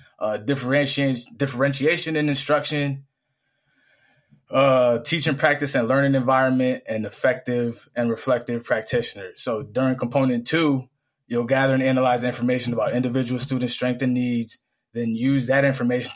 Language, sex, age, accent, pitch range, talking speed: English, male, 20-39, American, 120-135 Hz, 130 wpm